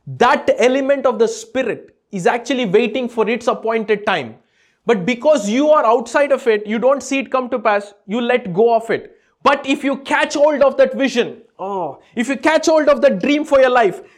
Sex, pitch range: male, 195-255 Hz